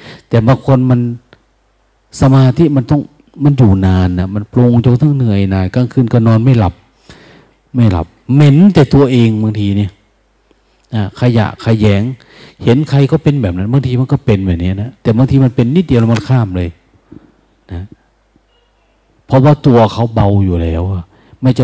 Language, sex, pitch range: Thai, male, 105-130 Hz